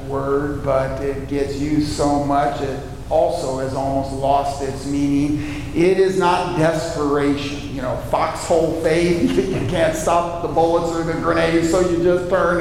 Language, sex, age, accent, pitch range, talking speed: English, male, 50-69, American, 135-170 Hz, 160 wpm